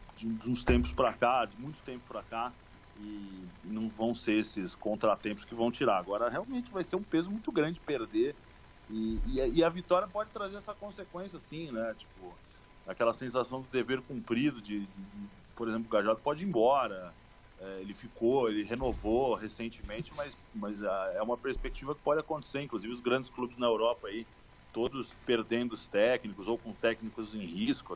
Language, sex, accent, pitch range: Portuguese, male, Brazilian, 105-150 Hz